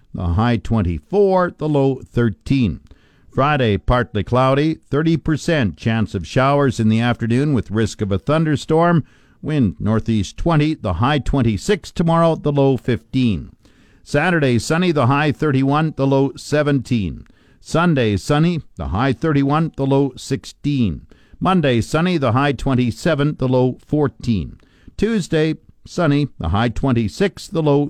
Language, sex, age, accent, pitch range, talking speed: English, male, 50-69, American, 115-150 Hz, 135 wpm